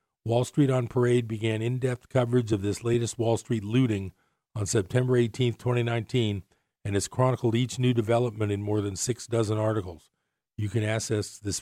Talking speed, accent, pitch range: 170 wpm, American, 105-120 Hz